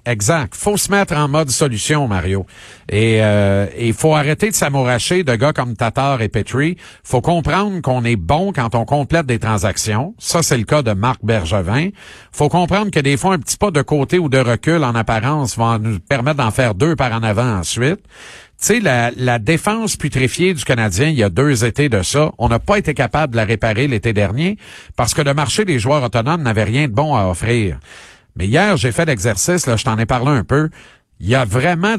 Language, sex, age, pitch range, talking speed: French, male, 50-69, 115-160 Hz, 220 wpm